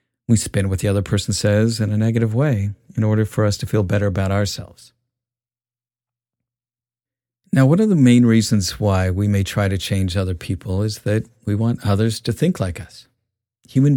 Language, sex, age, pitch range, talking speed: English, male, 50-69, 100-120 Hz, 190 wpm